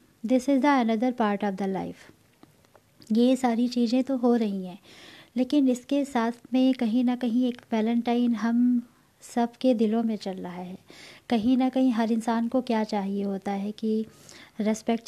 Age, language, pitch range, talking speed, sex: 20-39, Hindi, 215-255 Hz, 175 wpm, female